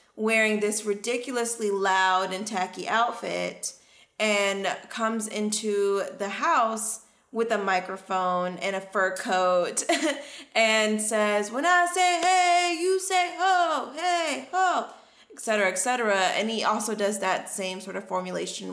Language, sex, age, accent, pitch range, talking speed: English, female, 20-39, American, 190-235 Hz, 135 wpm